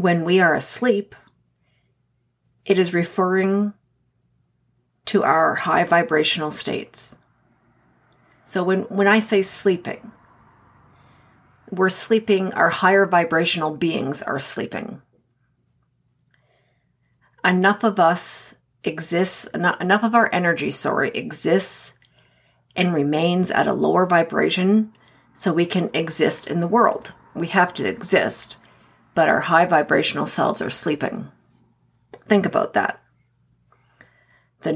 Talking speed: 110 wpm